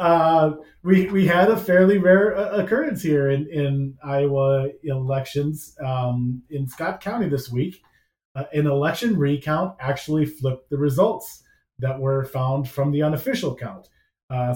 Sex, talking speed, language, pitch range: male, 145 wpm, English, 130-155 Hz